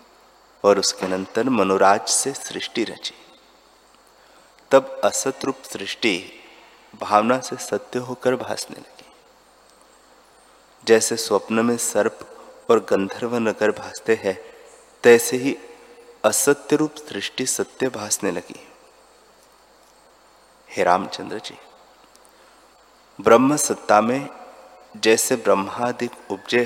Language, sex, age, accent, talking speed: Hindi, male, 30-49, native, 95 wpm